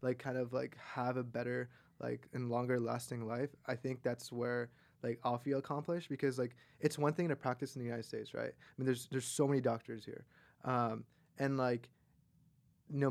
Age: 20-39